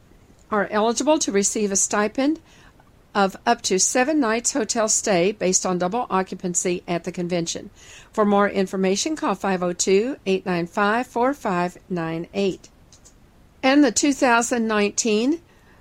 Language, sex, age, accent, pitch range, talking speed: English, female, 50-69, American, 185-240 Hz, 105 wpm